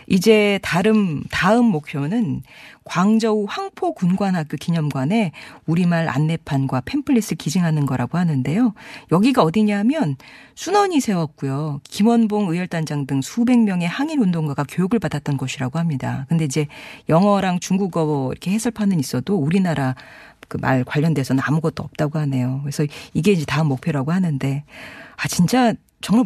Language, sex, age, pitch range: Korean, female, 40-59, 145-210 Hz